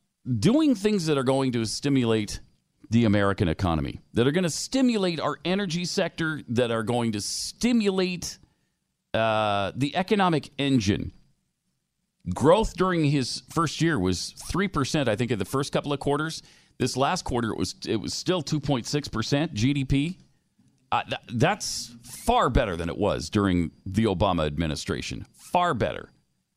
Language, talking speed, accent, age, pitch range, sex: English, 145 wpm, American, 40-59, 110-160 Hz, male